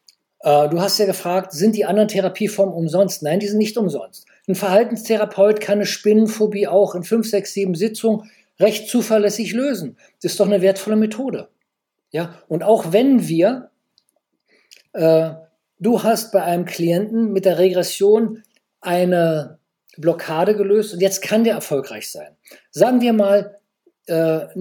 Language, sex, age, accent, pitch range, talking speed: German, male, 50-69, German, 170-210 Hz, 150 wpm